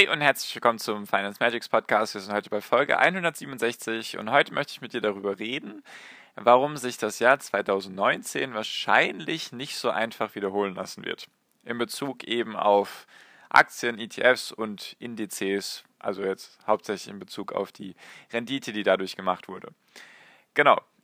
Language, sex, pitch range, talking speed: German, male, 105-130 Hz, 155 wpm